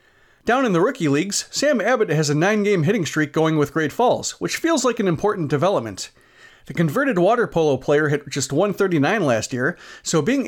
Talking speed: 195 wpm